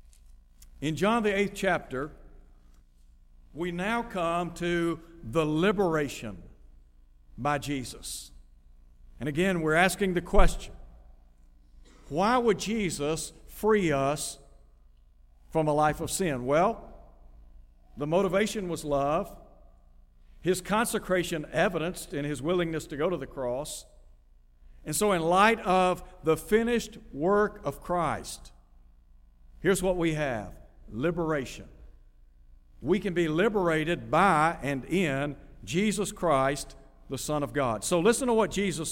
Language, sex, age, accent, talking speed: English, male, 60-79, American, 120 wpm